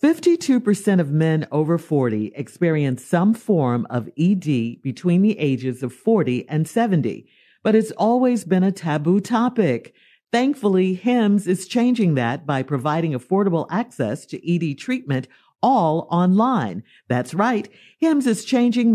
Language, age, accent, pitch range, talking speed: English, 50-69, American, 155-230 Hz, 135 wpm